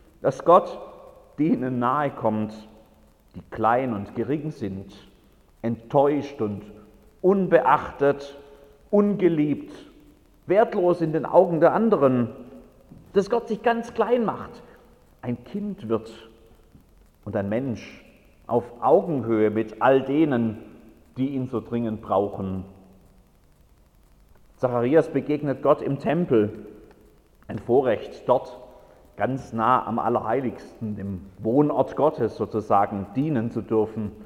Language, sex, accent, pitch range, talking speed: German, male, German, 110-155 Hz, 105 wpm